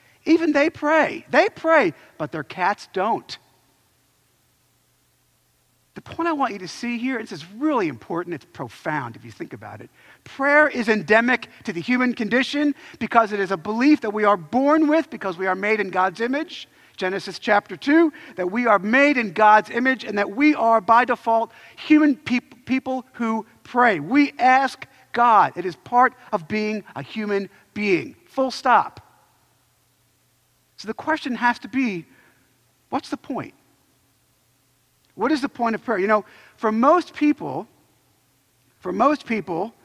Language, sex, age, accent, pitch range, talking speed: English, male, 50-69, American, 175-265 Hz, 165 wpm